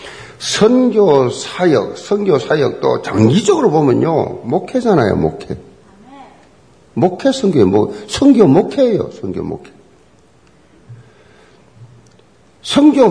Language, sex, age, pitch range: Korean, male, 50-69, 135-225 Hz